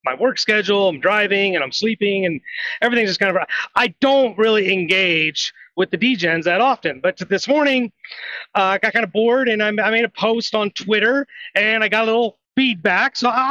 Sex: male